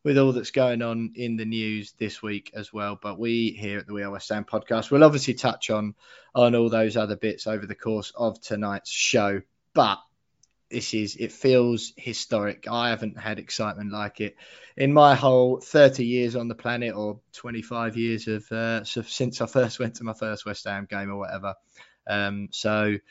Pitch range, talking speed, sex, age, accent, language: 105-125 Hz, 195 wpm, male, 20-39, British, English